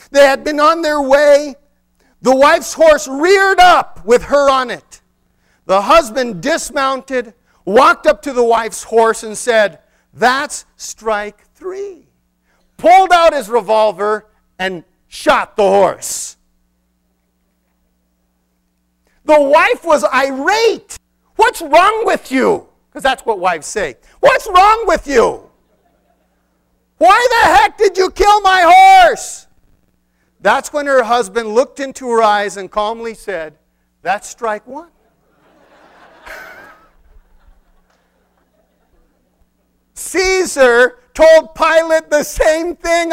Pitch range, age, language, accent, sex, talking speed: 215-320 Hz, 50-69, English, American, male, 115 wpm